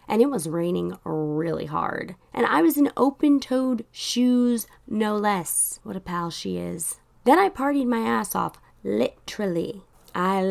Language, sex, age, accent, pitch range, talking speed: English, female, 20-39, American, 190-260 Hz, 155 wpm